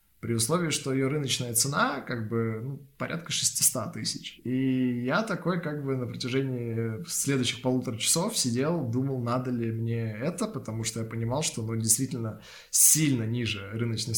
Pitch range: 115-140 Hz